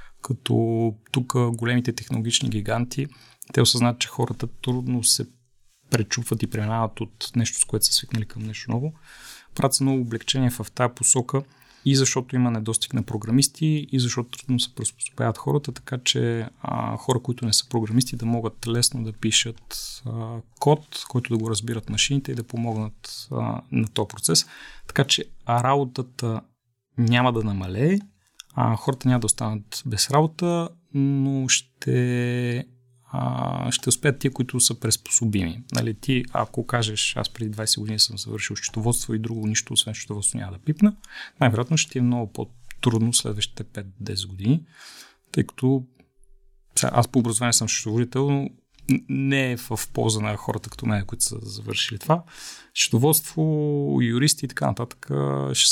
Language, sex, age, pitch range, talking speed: Bulgarian, male, 30-49, 110-130 Hz, 155 wpm